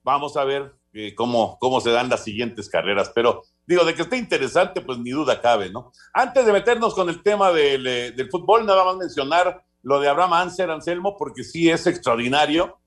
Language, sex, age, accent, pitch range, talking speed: Spanish, male, 50-69, Mexican, 125-180 Hz, 205 wpm